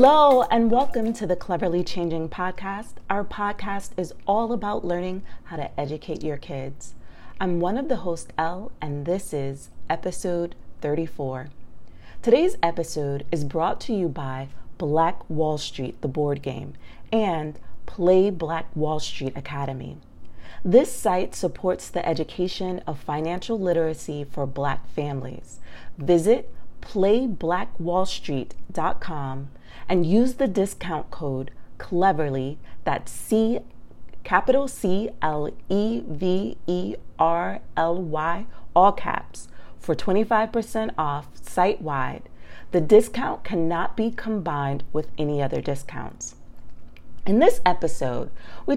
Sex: female